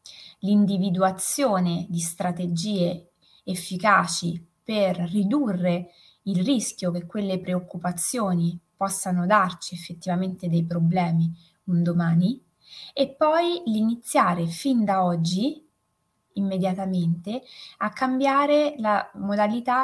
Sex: female